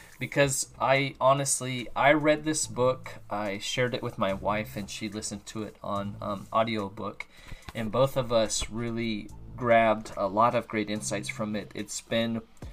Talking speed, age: 170 wpm, 30-49